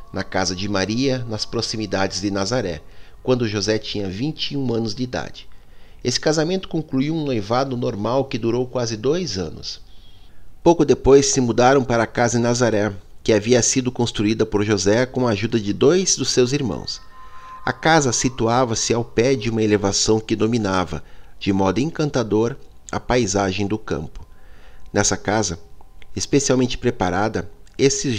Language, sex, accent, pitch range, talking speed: Portuguese, male, Brazilian, 100-130 Hz, 150 wpm